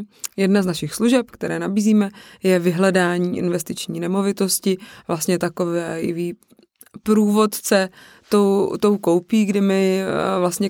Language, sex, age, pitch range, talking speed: Czech, female, 20-39, 170-200 Hz, 105 wpm